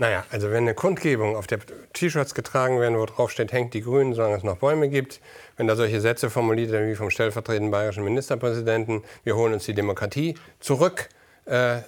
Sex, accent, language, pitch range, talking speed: male, German, German, 110-135 Hz, 195 wpm